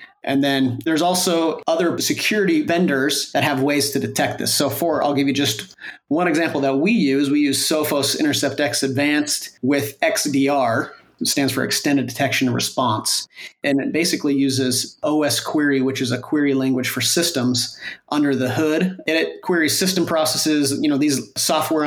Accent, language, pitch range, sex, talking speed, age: American, English, 135-155 Hz, male, 175 wpm, 30-49